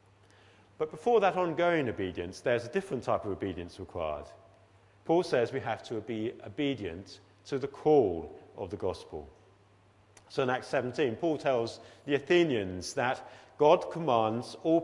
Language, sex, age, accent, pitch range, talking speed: English, male, 40-59, British, 100-140 Hz, 150 wpm